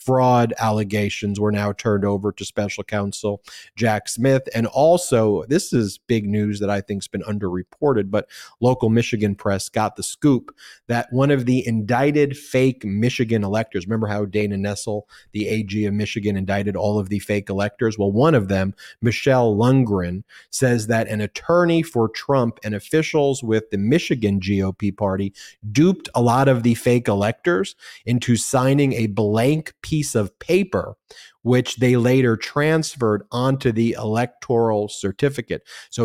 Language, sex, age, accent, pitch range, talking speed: English, male, 30-49, American, 105-130 Hz, 160 wpm